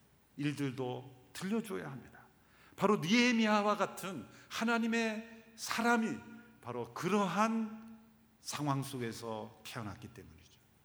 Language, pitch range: Korean, 125-210 Hz